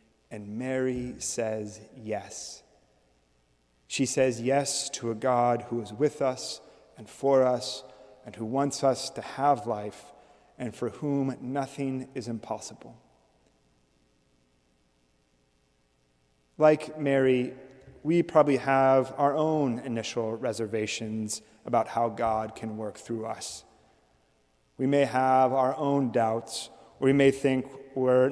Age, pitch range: 30-49, 110-140 Hz